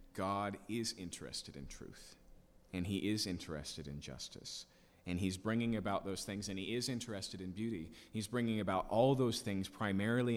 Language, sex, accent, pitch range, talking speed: English, male, American, 90-130 Hz, 175 wpm